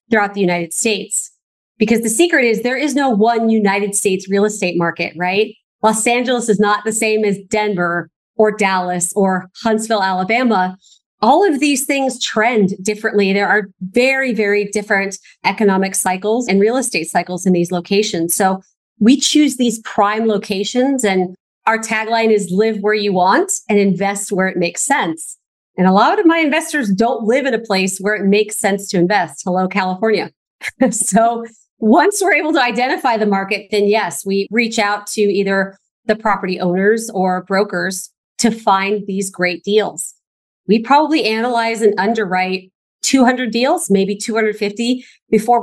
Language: English